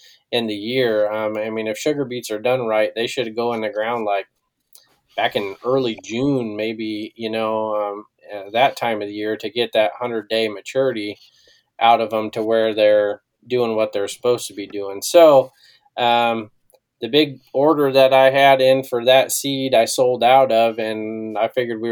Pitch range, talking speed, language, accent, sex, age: 105-125 Hz, 195 wpm, English, American, male, 20-39